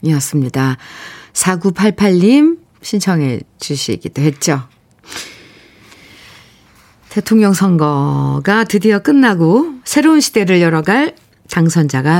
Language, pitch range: Korean, 140-200 Hz